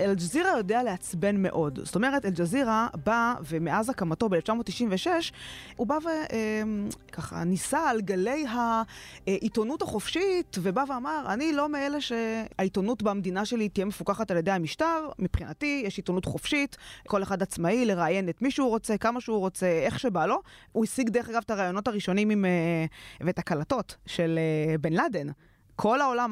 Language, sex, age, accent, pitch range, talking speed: Hebrew, female, 20-39, native, 175-235 Hz, 145 wpm